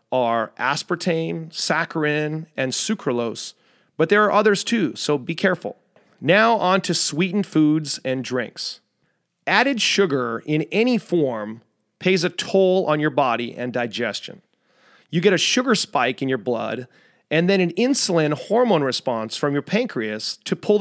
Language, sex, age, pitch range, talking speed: English, male, 40-59, 135-190 Hz, 150 wpm